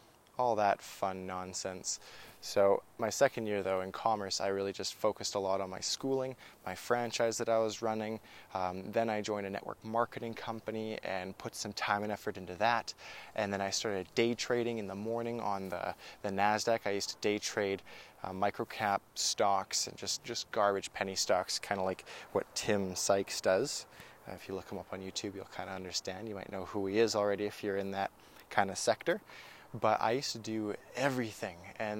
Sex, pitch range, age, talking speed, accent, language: male, 100-115 Hz, 20-39, 205 wpm, American, English